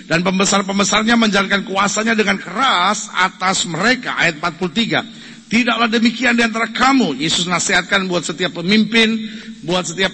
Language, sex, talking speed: Indonesian, male, 130 wpm